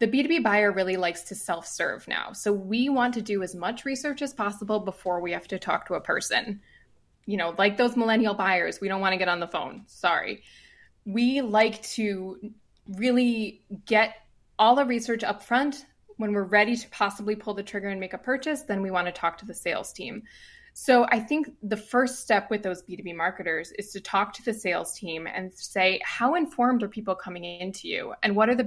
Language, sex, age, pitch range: English, female, 20-39, 190-235 Hz